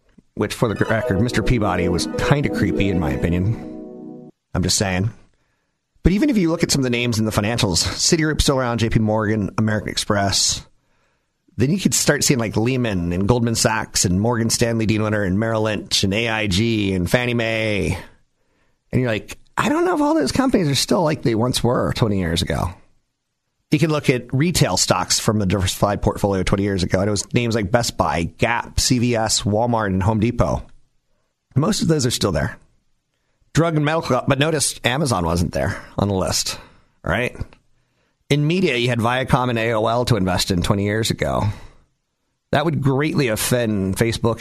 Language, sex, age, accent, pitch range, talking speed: English, male, 30-49, American, 100-125 Hz, 190 wpm